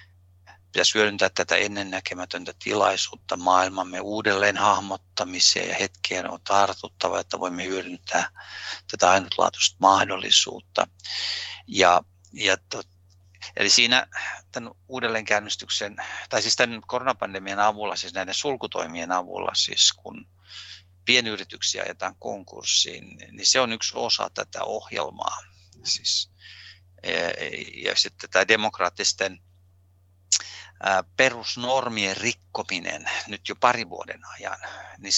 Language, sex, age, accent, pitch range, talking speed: Finnish, male, 50-69, native, 90-105 Hz, 100 wpm